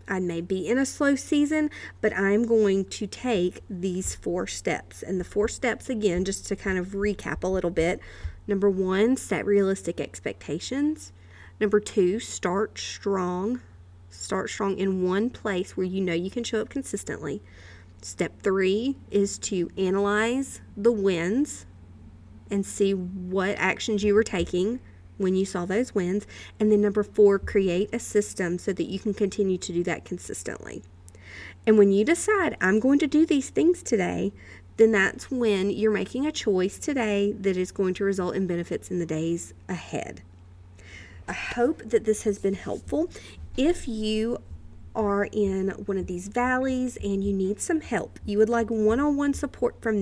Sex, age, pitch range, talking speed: female, 40-59, 180-220 Hz, 170 wpm